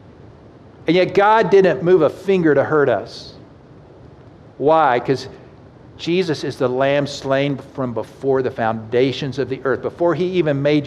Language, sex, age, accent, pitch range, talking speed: English, male, 50-69, American, 130-175 Hz, 155 wpm